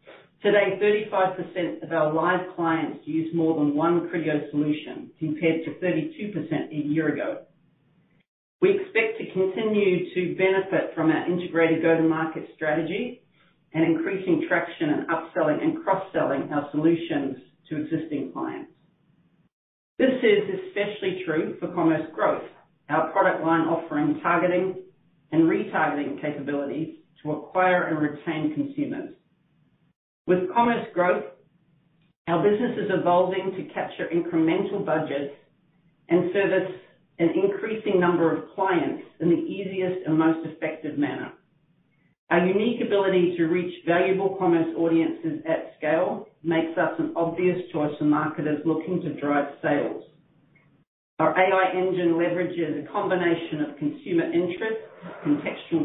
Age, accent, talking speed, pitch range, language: 40-59, Australian, 125 wpm, 160-195 Hz, English